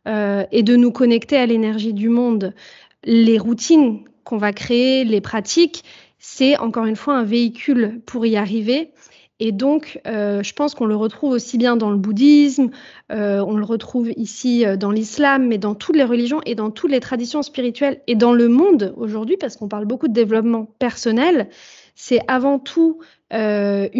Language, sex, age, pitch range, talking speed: French, female, 30-49, 220-280 Hz, 185 wpm